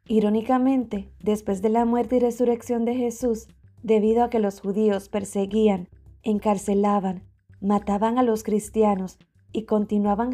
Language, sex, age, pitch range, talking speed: English, female, 20-39, 200-230 Hz, 130 wpm